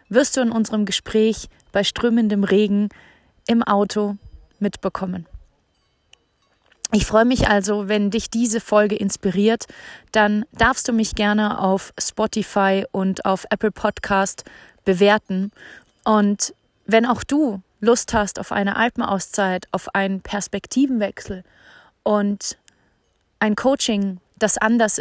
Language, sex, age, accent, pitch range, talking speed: German, female, 30-49, German, 200-225 Hz, 120 wpm